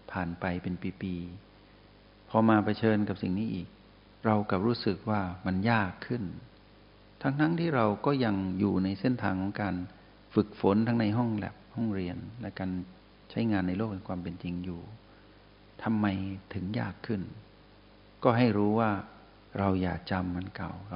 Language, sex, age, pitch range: Thai, male, 60-79, 95-110 Hz